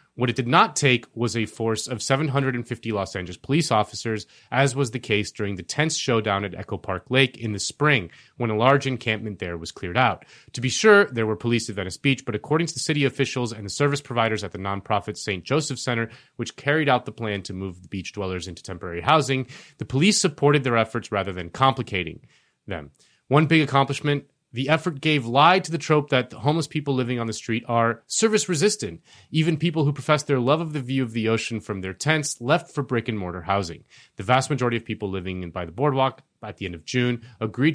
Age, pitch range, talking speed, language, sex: 30-49, 105-145 Hz, 220 wpm, English, male